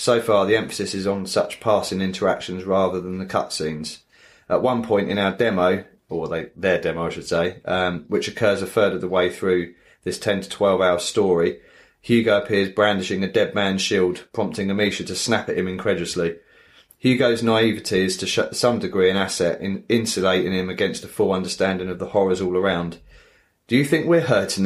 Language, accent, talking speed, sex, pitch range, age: English, British, 190 wpm, male, 95-110 Hz, 30-49